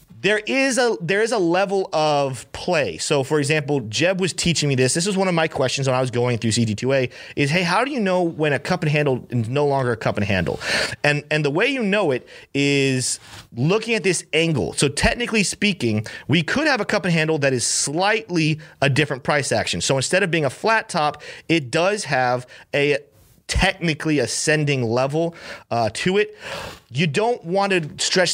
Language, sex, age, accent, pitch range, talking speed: English, male, 30-49, American, 125-180 Hz, 210 wpm